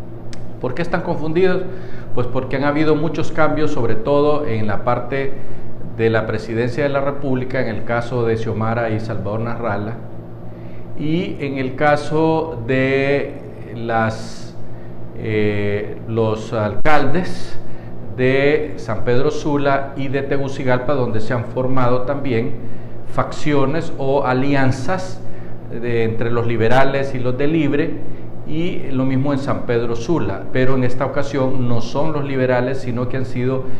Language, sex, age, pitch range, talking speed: Spanish, male, 50-69, 115-145 Hz, 140 wpm